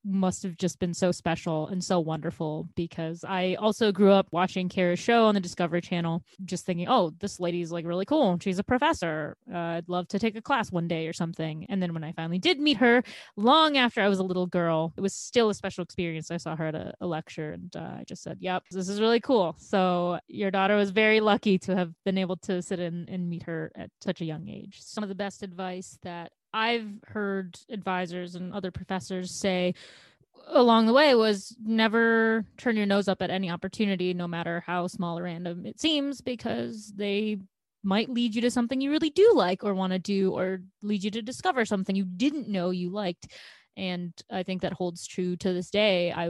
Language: English